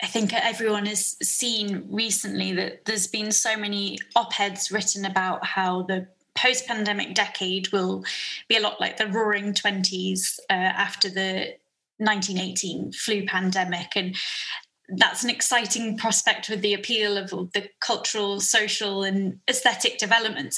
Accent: British